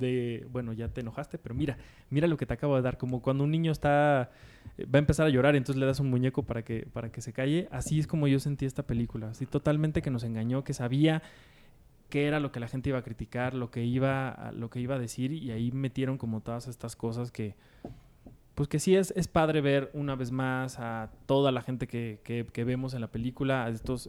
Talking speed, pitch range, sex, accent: 240 wpm, 120-145 Hz, male, Mexican